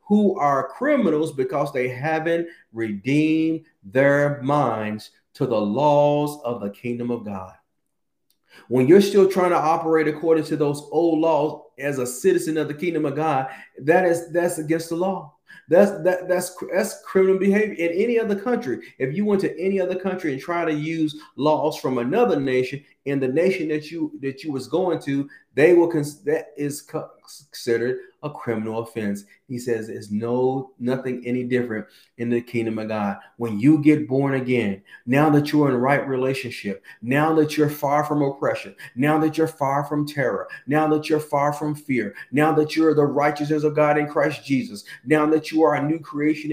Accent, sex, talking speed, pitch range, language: American, male, 190 wpm, 130-160 Hz, English